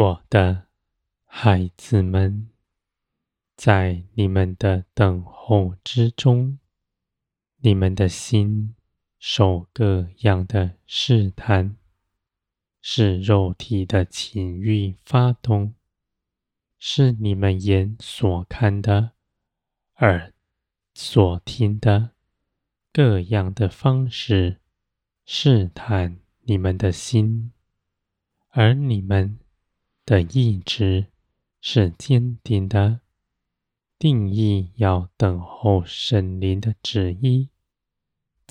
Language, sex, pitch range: Chinese, male, 95-110 Hz